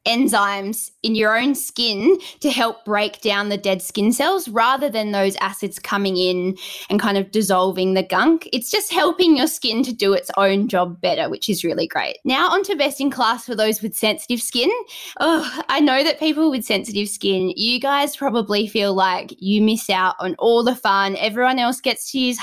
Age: 10-29